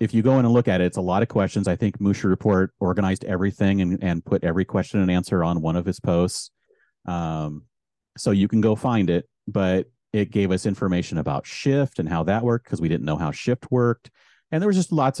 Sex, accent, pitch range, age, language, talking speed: male, American, 90-110 Hz, 40-59, English, 235 wpm